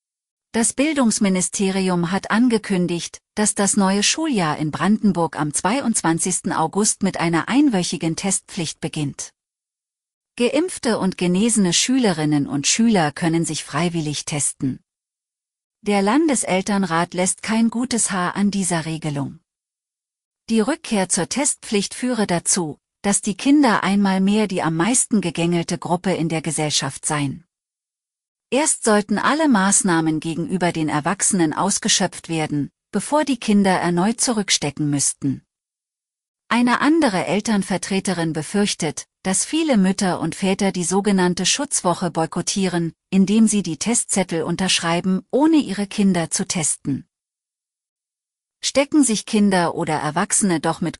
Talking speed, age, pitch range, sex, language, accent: 120 wpm, 40-59, 165-220 Hz, female, German, German